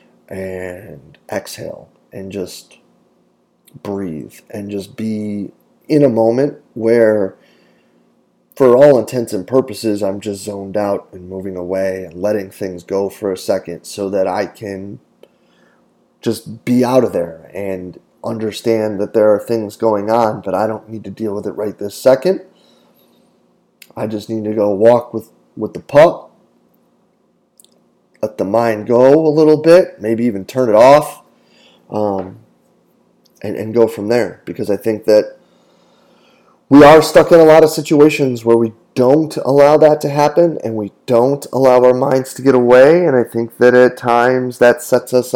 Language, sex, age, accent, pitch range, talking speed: English, male, 30-49, American, 100-130 Hz, 165 wpm